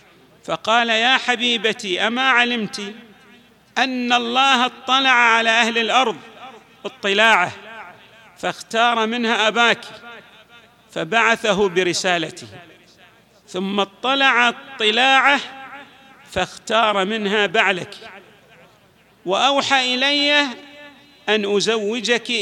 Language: Arabic